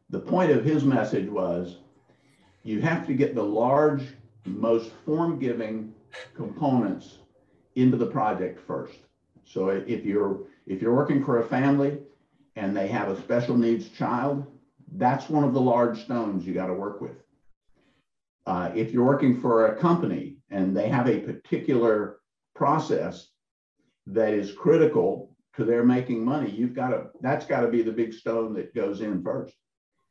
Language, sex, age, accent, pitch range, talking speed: English, male, 50-69, American, 100-135 Hz, 155 wpm